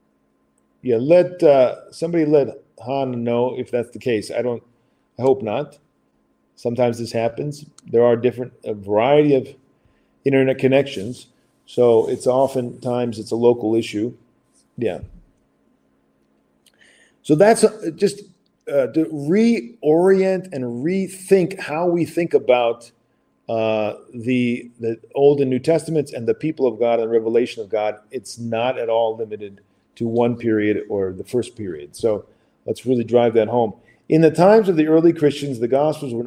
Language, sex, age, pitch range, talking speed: English, male, 40-59, 115-160 Hz, 150 wpm